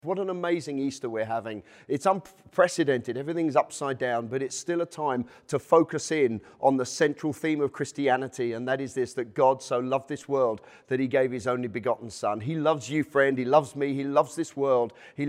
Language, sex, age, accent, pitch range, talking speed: English, male, 40-59, British, 135-165 Hz, 210 wpm